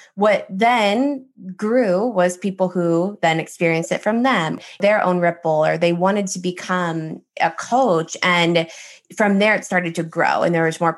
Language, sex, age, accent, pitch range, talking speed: English, female, 20-39, American, 170-195 Hz, 175 wpm